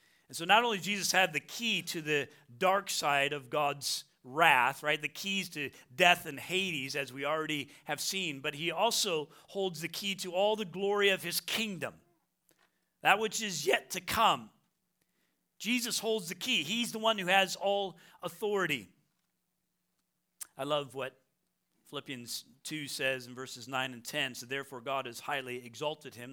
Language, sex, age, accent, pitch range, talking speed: English, male, 40-59, American, 130-175 Hz, 170 wpm